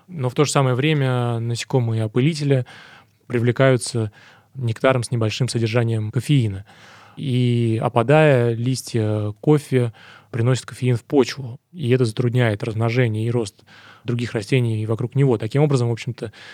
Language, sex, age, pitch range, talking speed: Russian, male, 20-39, 110-130 Hz, 130 wpm